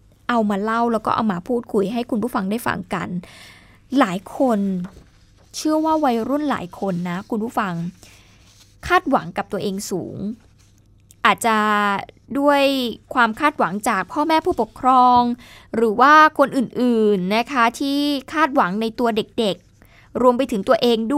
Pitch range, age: 205-265 Hz, 20-39